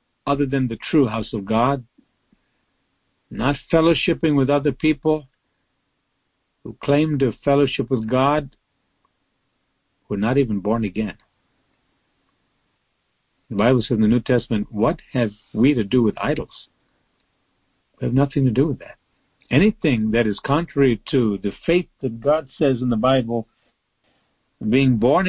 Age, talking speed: 60-79, 140 wpm